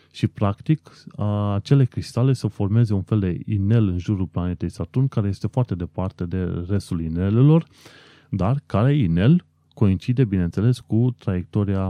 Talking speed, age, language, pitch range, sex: 140 wpm, 30-49, Romanian, 85-125 Hz, male